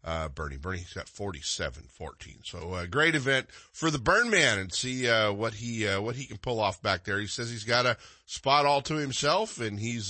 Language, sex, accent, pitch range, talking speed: English, male, American, 100-140 Hz, 230 wpm